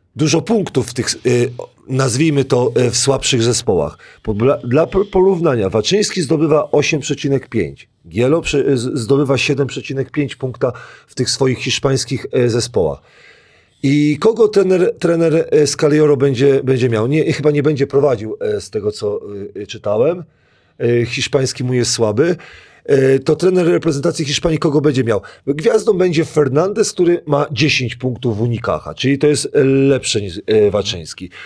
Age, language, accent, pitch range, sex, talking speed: 40-59, Polish, native, 125-165 Hz, male, 125 wpm